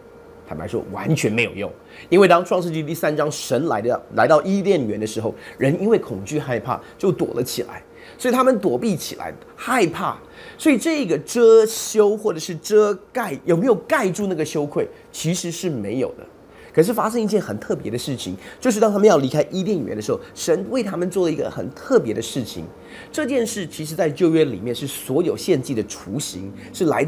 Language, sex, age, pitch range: Chinese, male, 30-49, 125-210 Hz